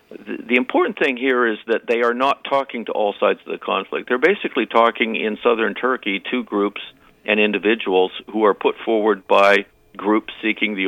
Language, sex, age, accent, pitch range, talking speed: English, male, 50-69, American, 105-125 Hz, 190 wpm